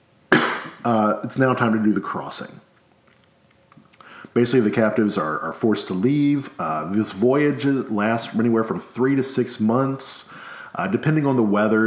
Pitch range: 100-130 Hz